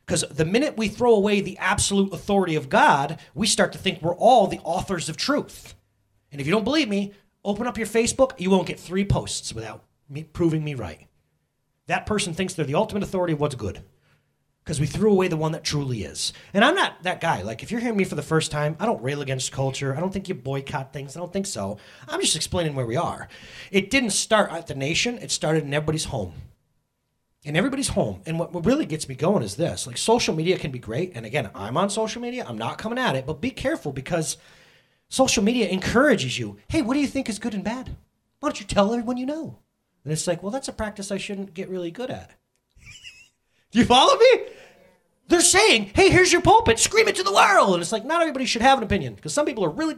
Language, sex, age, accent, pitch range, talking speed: English, male, 30-49, American, 150-240 Hz, 240 wpm